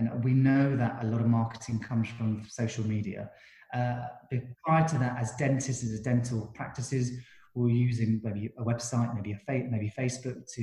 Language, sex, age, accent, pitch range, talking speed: English, male, 30-49, British, 115-125 Hz, 180 wpm